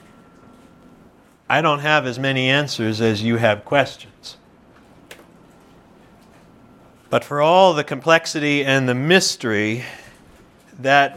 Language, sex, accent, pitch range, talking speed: English, male, American, 125-170 Hz, 100 wpm